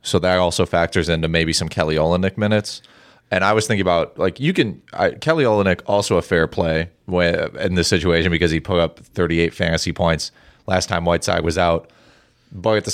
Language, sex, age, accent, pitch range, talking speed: English, male, 30-49, American, 80-95 Hz, 205 wpm